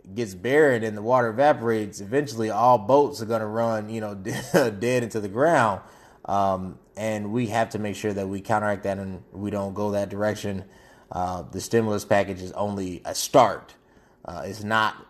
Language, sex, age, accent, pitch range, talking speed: English, male, 20-39, American, 100-120 Hz, 185 wpm